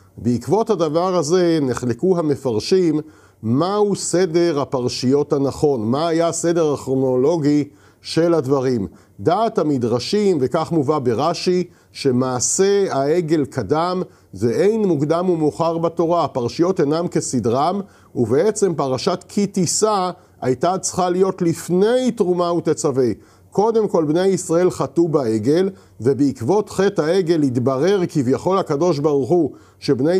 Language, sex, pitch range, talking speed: Hebrew, male, 135-185 Hz, 110 wpm